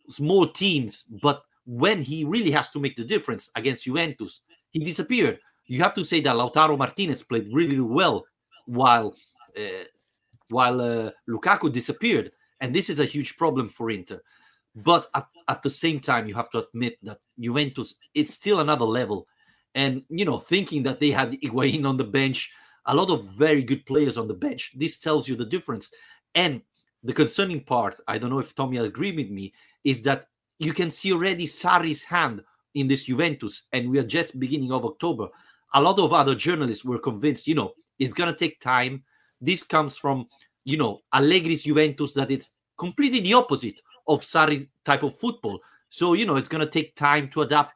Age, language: 40-59, English